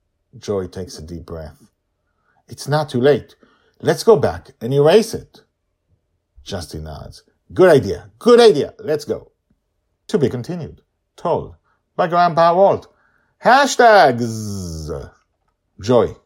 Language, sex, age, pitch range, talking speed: English, male, 50-69, 85-110 Hz, 120 wpm